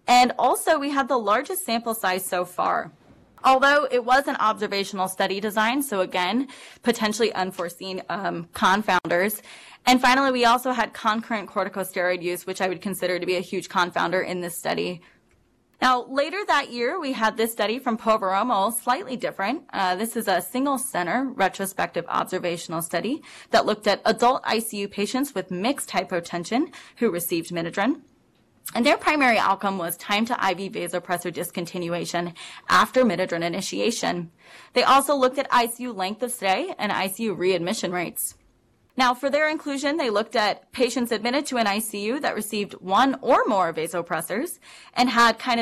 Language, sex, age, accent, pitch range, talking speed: English, female, 20-39, American, 185-250 Hz, 160 wpm